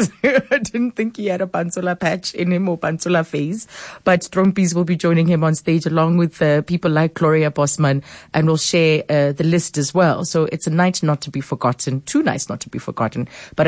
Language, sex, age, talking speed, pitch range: English, female, 30-49, 235 wpm, 155-190 Hz